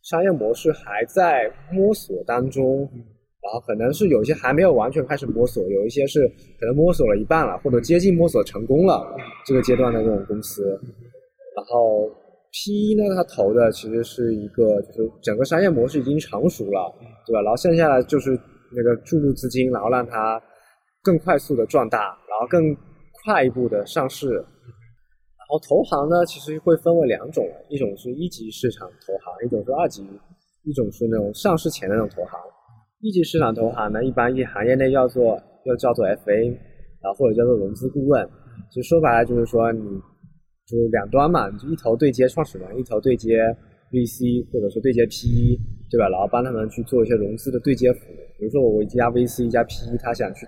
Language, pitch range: Chinese, 115-145 Hz